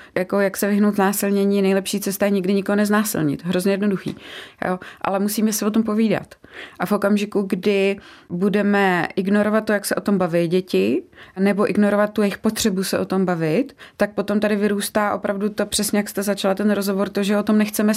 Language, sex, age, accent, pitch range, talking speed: Czech, female, 20-39, native, 180-205 Hz, 195 wpm